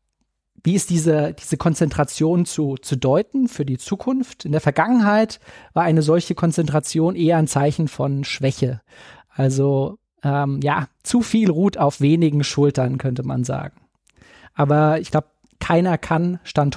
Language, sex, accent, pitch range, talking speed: German, male, German, 150-180 Hz, 145 wpm